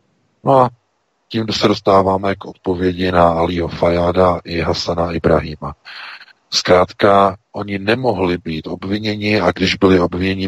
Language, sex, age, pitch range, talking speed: Czech, male, 40-59, 80-95 Hz, 130 wpm